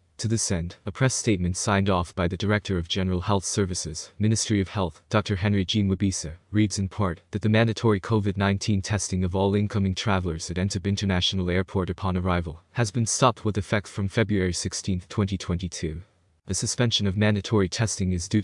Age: 20-39